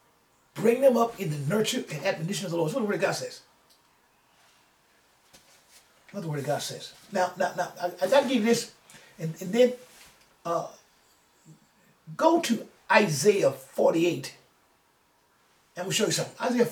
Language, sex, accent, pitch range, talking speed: English, male, American, 180-265 Hz, 170 wpm